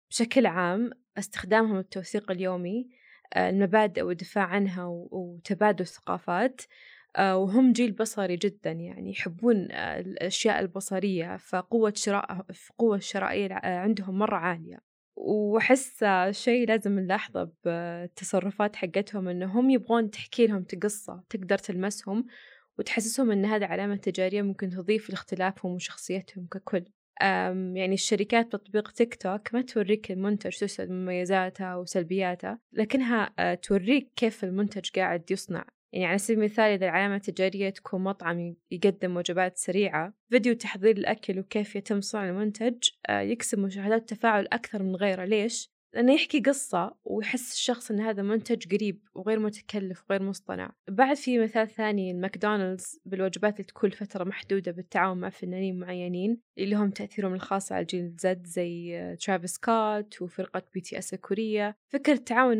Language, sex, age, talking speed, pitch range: Arabic, female, 20-39, 125 wpm, 185-220 Hz